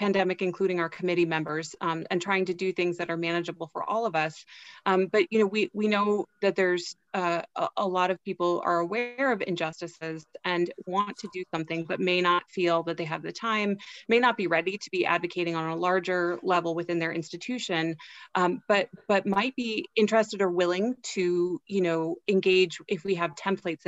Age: 30-49